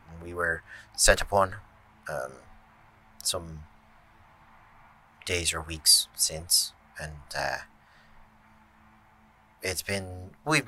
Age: 30-49